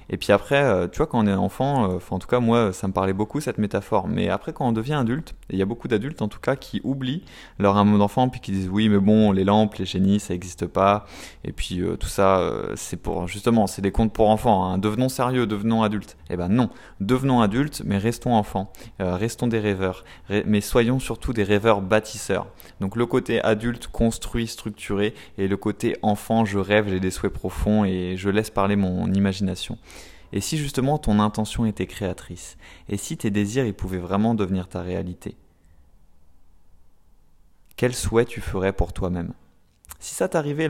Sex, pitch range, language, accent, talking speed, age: male, 95-115 Hz, French, French, 200 wpm, 20-39